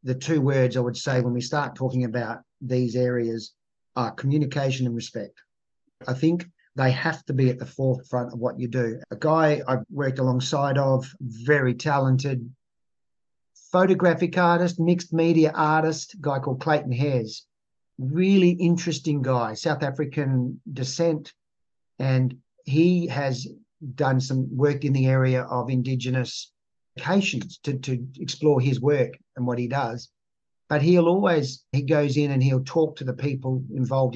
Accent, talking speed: Australian, 150 wpm